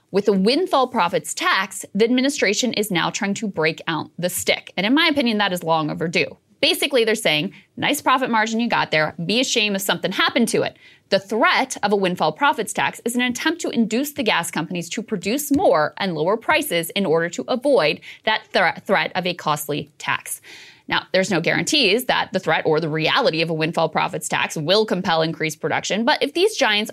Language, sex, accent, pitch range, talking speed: English, female, American, 180-250 Hz, 205 wpm